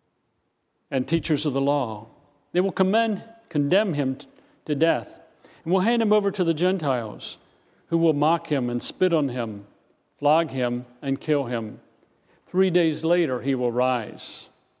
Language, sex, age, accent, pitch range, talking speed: English, male, 50-69, American, 130-180 Hz, 160 wpm